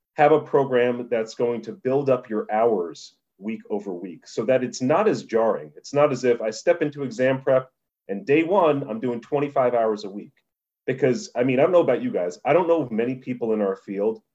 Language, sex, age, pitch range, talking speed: English, male, 30-49, 105-145 Hz, 225 wpm